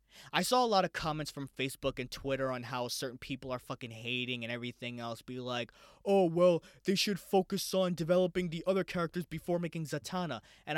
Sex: male